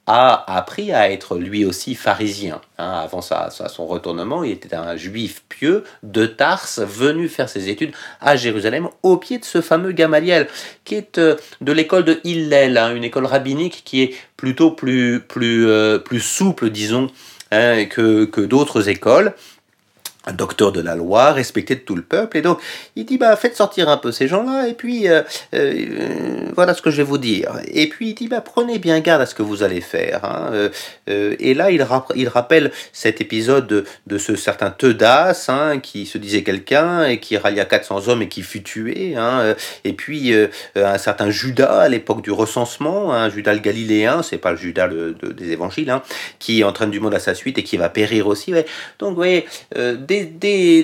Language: French